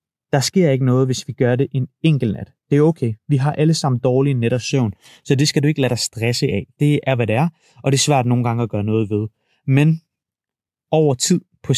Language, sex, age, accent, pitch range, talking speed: Danish, male, 30-49, native, 115-145 Hz, 250 wpm